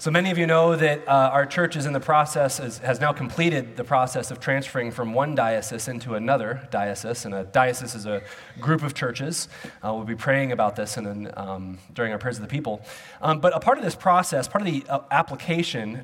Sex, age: male, 30-49